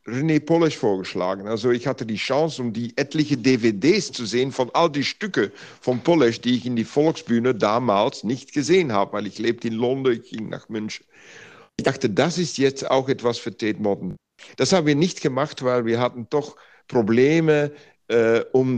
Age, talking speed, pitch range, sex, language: 50-69, 190 wpm, 110-135 Hz, male, German